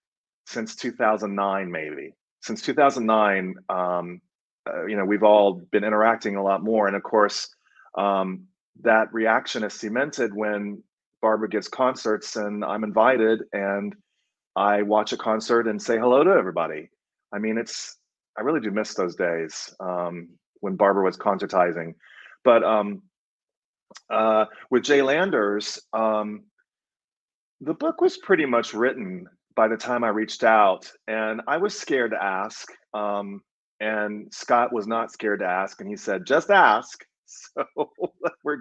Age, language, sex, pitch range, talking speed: 30-49, English, male, 100-120 Hz, 150 wpm